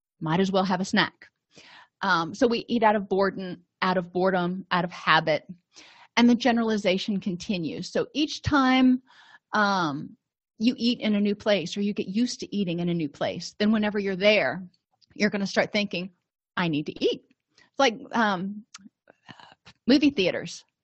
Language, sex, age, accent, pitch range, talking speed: English, female, 30-49, American, 185-240 Hz, 175 wpm